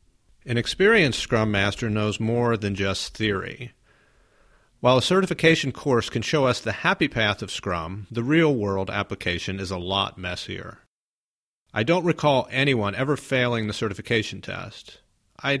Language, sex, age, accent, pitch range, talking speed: English, male, 40-59, American, 100-125 Hz, 145 wpm